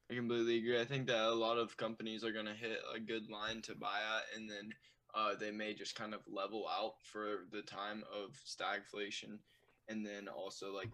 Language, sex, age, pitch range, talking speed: English, male, 10-29, 100-110 Hz, 215 wpm